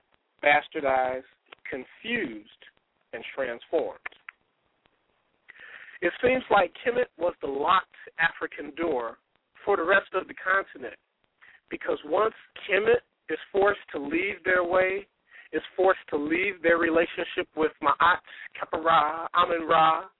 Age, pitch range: 50-69, 165-255 Hz